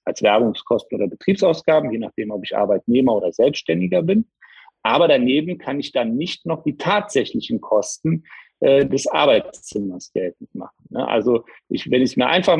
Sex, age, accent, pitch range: male, 50-69, German, 115-155 Hz